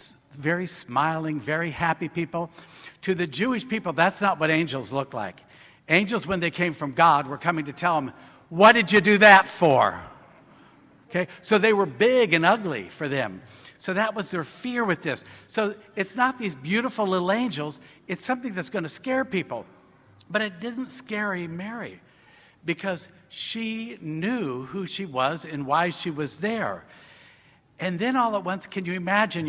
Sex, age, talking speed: male, 60-79, 175 wpm